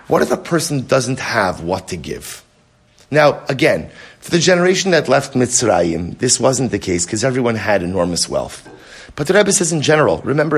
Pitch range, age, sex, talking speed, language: 130-175 Hz, 30-49, male, 185 wpm, English